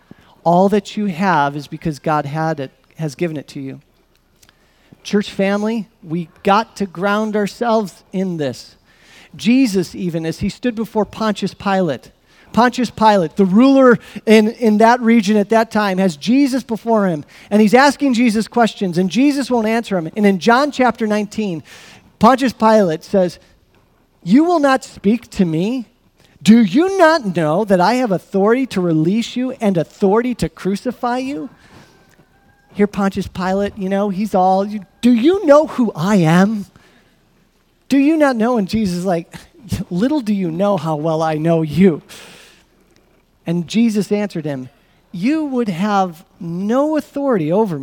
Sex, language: male, English